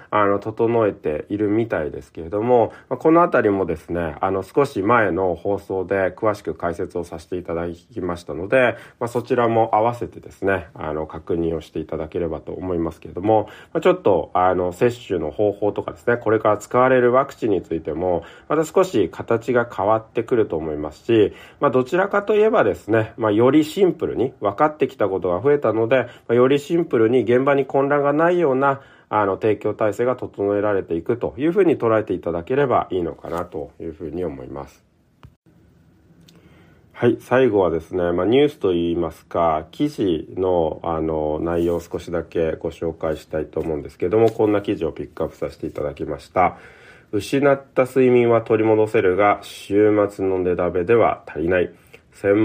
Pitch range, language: 90-125 Hz, Japanese